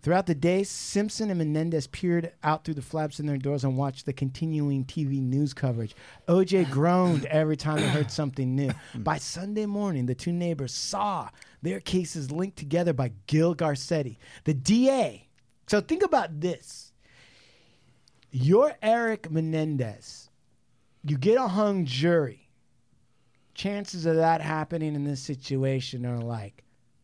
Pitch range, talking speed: 125-175 Hz, 145 wpm